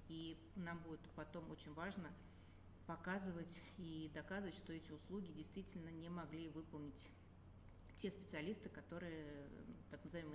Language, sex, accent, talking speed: Russian, female, native, 120 wpm